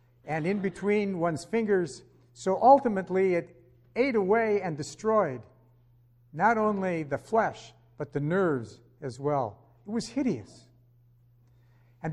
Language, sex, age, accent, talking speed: English, male, 60-79, American, 125 wpm